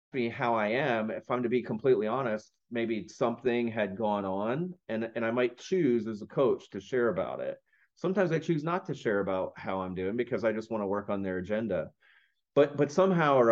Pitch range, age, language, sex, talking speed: 100-125 Hz, 30-49, English, male, 220 wpm